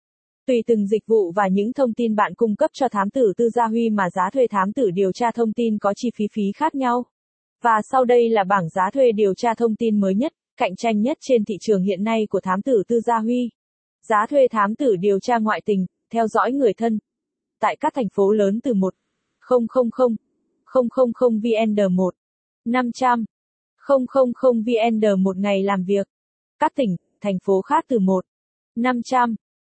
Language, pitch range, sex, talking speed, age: Vietnamese, 205-255 Hz, female, 195 wpm, 20-39